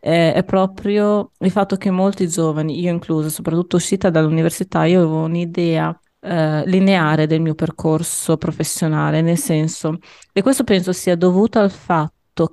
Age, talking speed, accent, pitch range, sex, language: 20-39, 145 wpm, native, 160-195 Hz, female, Italian